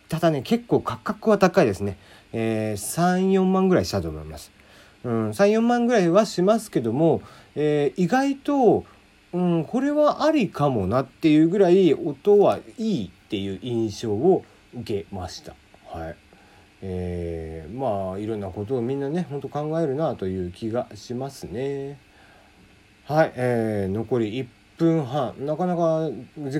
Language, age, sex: Japanese, 40-59, male